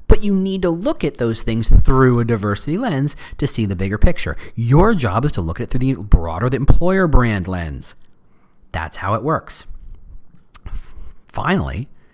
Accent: American